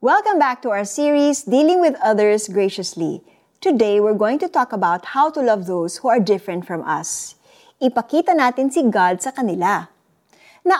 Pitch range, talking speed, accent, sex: 190-260 Hz, 170 wpm, native, female